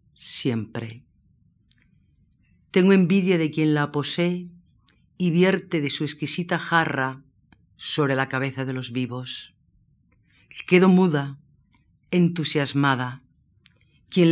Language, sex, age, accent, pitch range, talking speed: Spanish, female, 50-69, Spanish, 140-180 Hz, 95 wpm